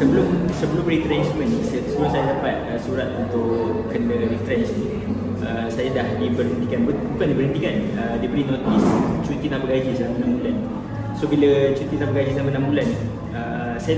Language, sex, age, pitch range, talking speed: Malay, male, 20-39, 110-150 Hz, 165 wpm